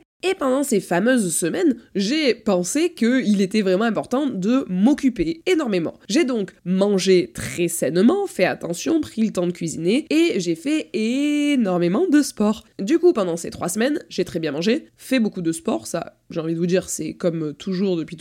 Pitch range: 180-250 Hz